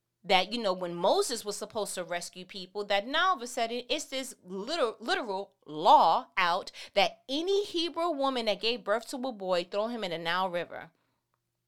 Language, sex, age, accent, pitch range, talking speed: English, female, 30-49, American, 165-220 Hz, 190 wpm